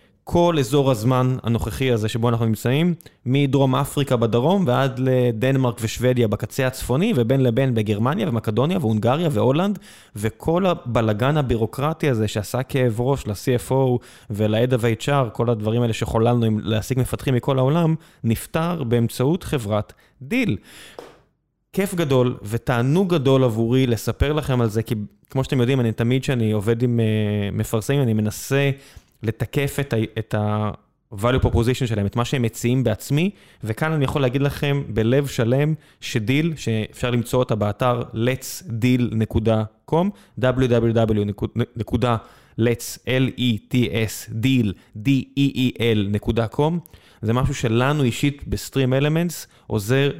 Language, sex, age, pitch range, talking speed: Hebrew, male, 20-39, 115-135 Hz, 120 wpm